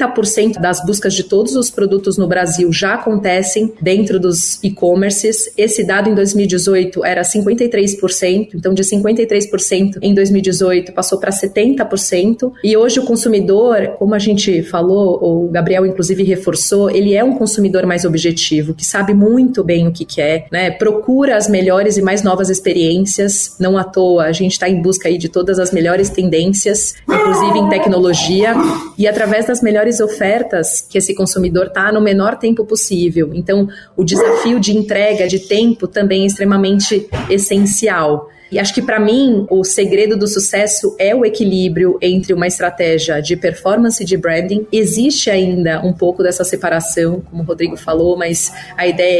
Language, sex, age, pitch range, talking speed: Portuguese, female, 30-49, 180-210 Hz, 165 wpm